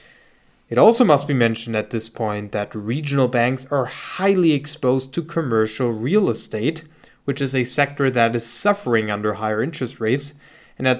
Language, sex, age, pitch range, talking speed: English, male, 20-39, 115-145 Hz, 170 wpm